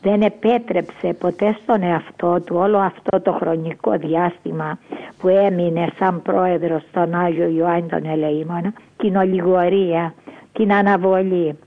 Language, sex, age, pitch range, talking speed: Greek, female, 50-69, 175-210 Hz, 125 wpm